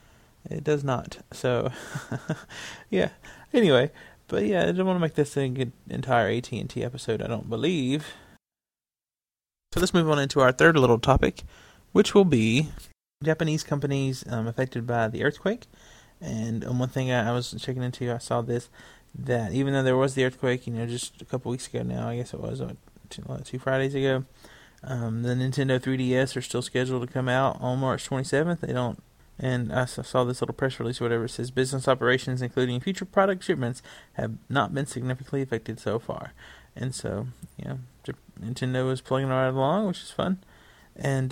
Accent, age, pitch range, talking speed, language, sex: American, 20-39, 120-140 Hz, 180 wpm, English, male